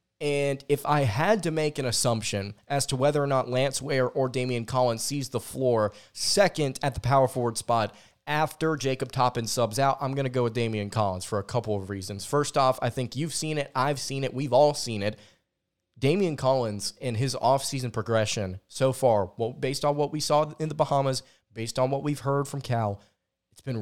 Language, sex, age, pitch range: English, male, 20-39, 120-145 Hz